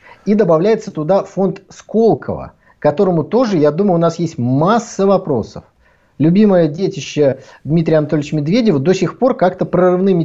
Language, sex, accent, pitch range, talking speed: Russian, male, native, 150-210 Hz, 140 wpm